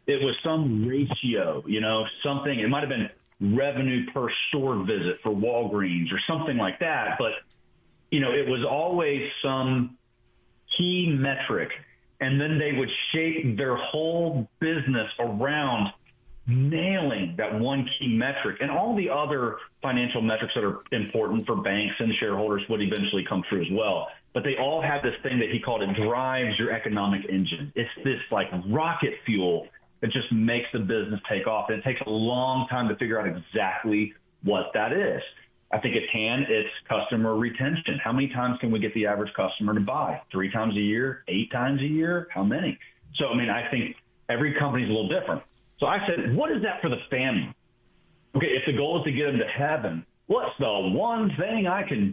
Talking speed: 190 wpm